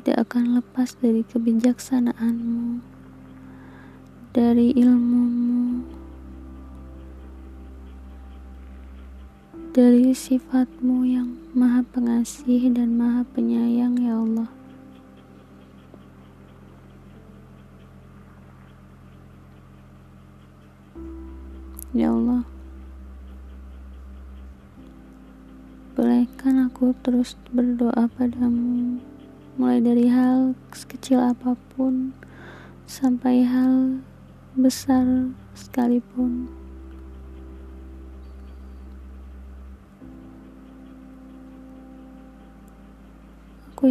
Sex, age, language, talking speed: female, 20-39, Indonesian, 45 wpm